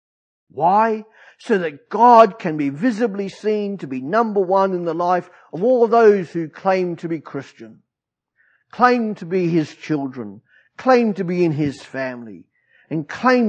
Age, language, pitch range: 50-69, English, 135-210 Hz